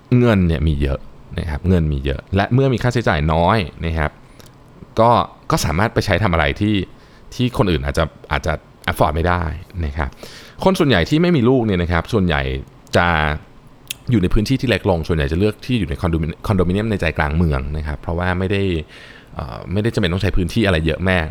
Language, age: Thai, 20-39